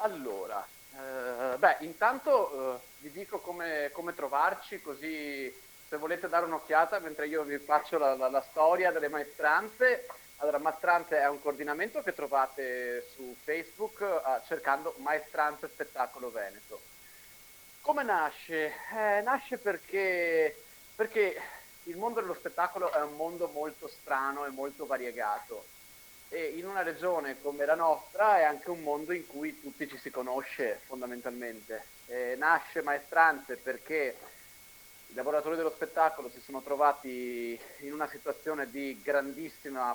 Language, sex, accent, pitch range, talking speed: Italian, male, native, 135-185 Hz, 135 wpm